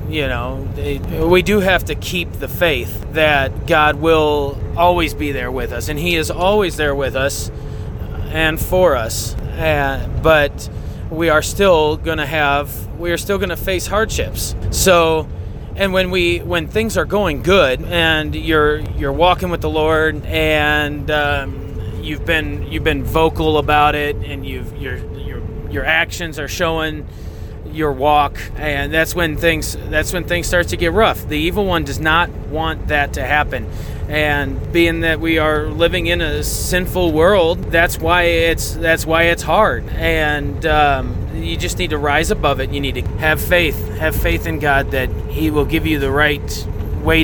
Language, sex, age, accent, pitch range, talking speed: English, male, 30-49, American, 100-160 Hz, 180 wpm